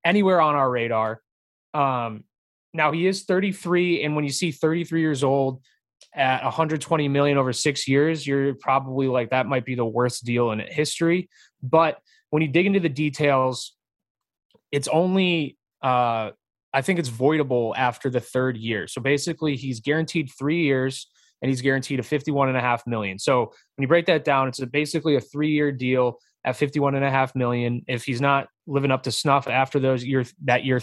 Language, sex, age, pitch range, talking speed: English, male, 20-39, 125-160 Hz, 180 wpm